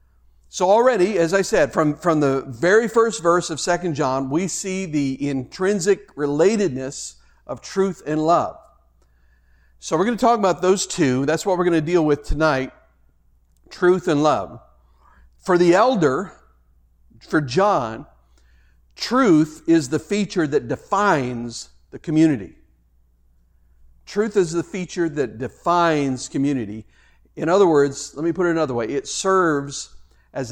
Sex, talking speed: male, 145 wpm